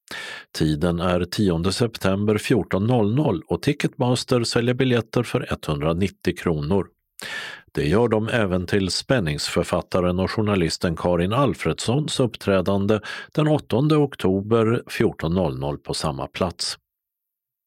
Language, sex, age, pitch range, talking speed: Swedish, male, 50-69, 85-120 Hz, 100 wpm